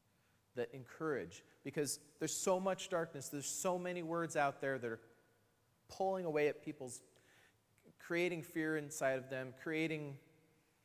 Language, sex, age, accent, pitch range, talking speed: English, male, 30-49, American, 110-140 Hz, 140 wpm